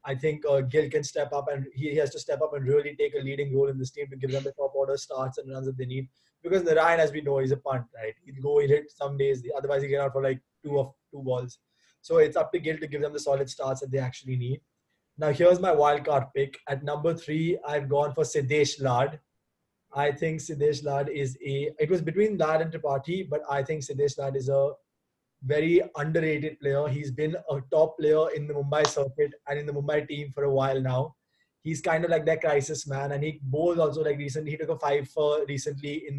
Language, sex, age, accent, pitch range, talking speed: English, male, 20-39, Indian, 140-160 Hz, 250 wpm